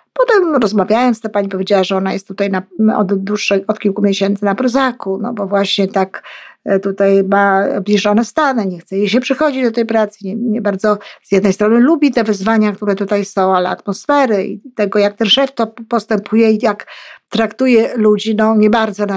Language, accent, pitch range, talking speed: Polish, native, 205-250 Hz, 190 wpm